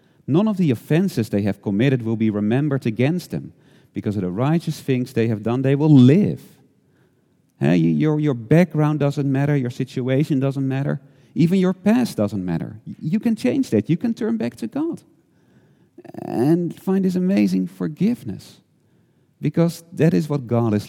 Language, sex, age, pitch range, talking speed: English, male, 40-59, 110-165 Hz, 170 wpm